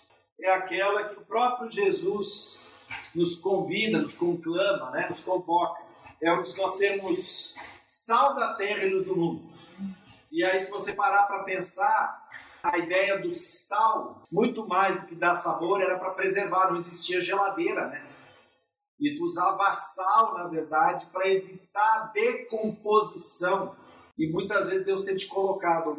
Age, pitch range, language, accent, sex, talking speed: 50-69, 170-215 Hz, Portuguese, Brazilian, male, 150 wpm